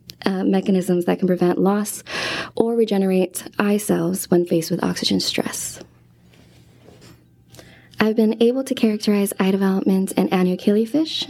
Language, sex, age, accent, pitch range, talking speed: English, female, 20-39, American, 180-210 Hz, 130 wpm